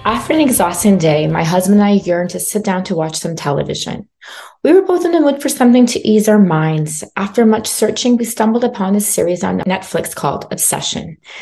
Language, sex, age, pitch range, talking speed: English, female, 30-49, 185-235 Hz, 210 wpm